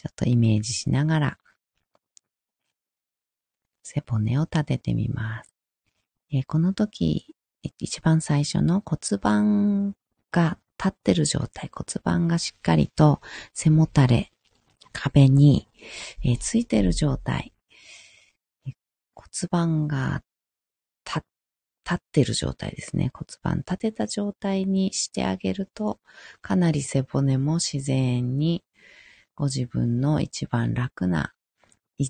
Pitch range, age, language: 110-165 Hz, 40-59, Japanese